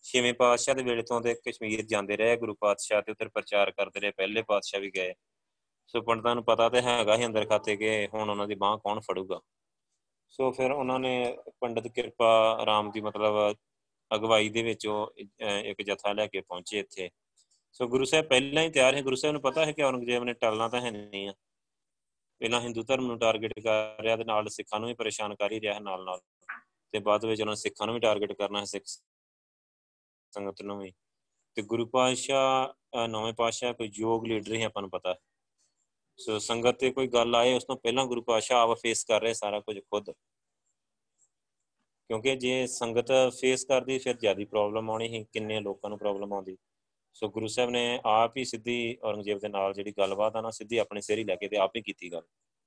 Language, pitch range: Punjabi, 105-125 Hz